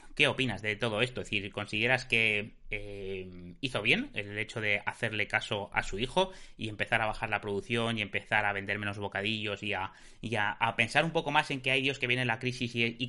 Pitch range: 105-125 Hz